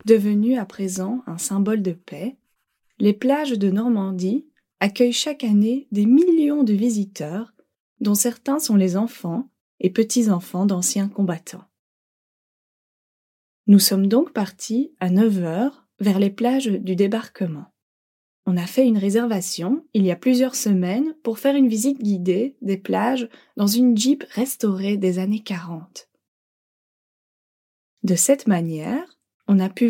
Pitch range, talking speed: 195-245 Hz, 135 wpm